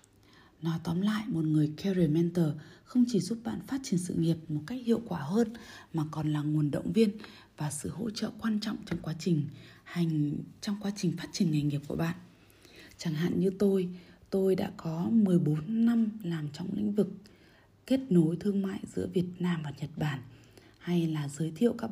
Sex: female